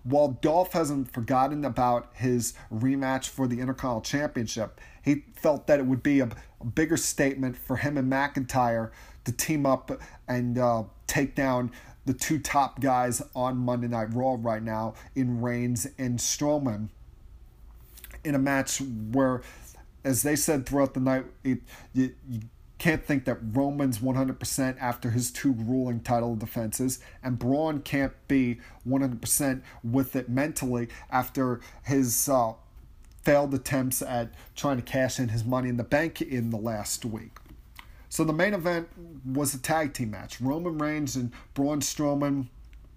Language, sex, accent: English, male, American